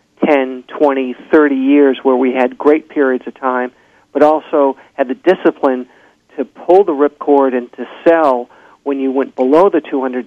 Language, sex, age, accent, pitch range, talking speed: English, male, 50-69, American, 130-155 Hz, 170 wpm